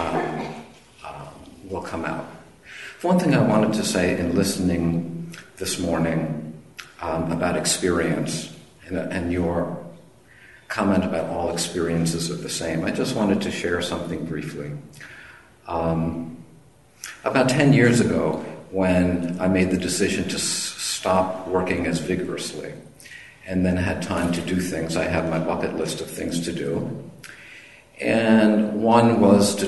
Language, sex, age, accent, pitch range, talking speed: English, male, 50-69, American, 85-95 Hz, 140 wpm